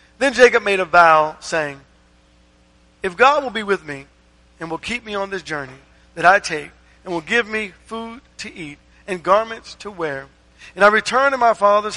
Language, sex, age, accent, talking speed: English, male, 50-69, American, 195 wpm